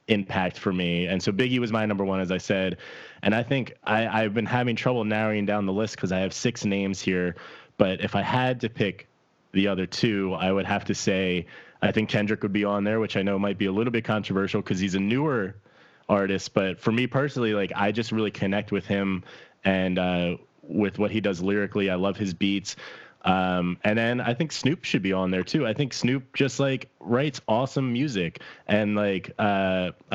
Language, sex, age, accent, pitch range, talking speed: English, male, 20-39, American, 95-115 Hz, 220 wpm